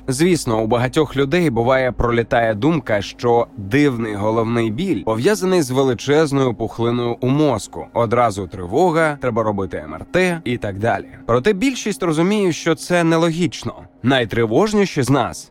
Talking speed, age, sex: 130 wpm, 20-39, male